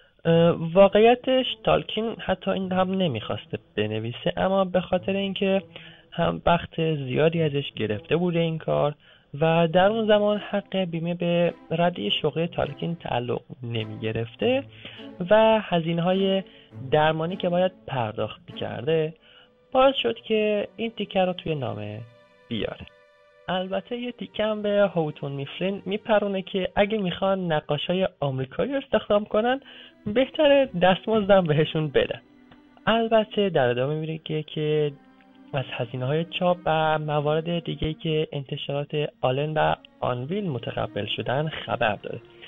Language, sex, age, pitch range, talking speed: Persian, male, 20-39, 140-195 Hz, 125 wpm